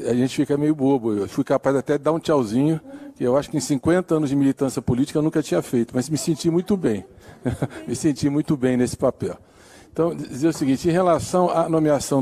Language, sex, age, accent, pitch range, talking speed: Portuguese, male, 60-79, Brazilian, 130-165 Hz, 225 wpm